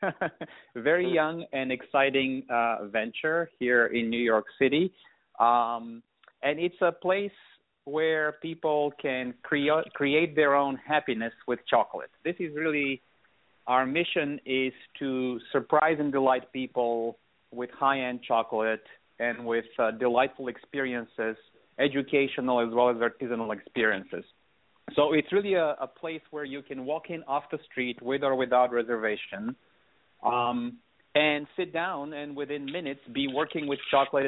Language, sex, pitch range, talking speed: English, male, 120-145 Hz, 140 wpm